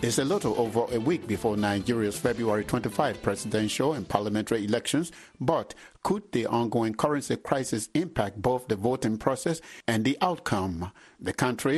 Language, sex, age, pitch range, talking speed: English, male, 60-79, 110-140 Hz, 155 wpm